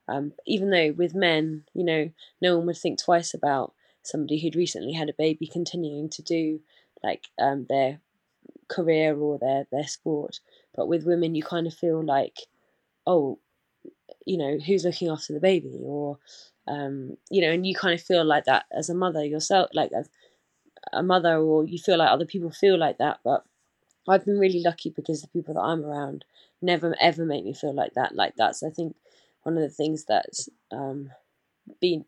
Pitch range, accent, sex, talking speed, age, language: 150-175 Hz, British, female, 195 wpm, 20-39, English